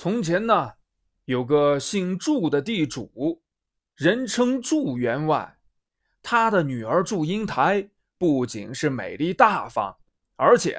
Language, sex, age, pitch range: Chinese, male, 20-39, 155-225 Hz